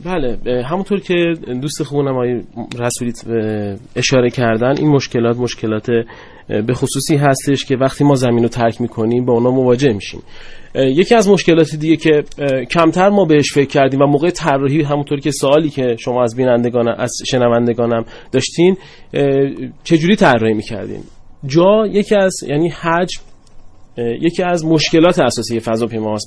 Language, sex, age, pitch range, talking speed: Persian, male, 30-49, 125-165 Hz, 145 wpm